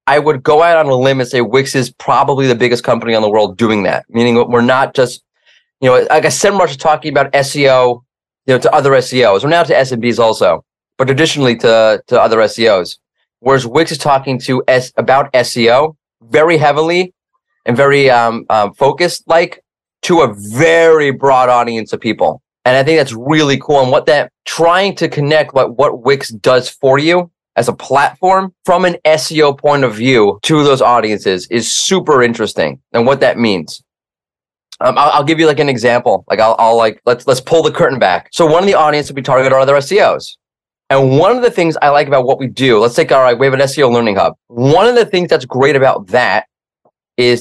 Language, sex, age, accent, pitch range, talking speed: English, male, 30-49, American, 120-155 Hz, 210 wpm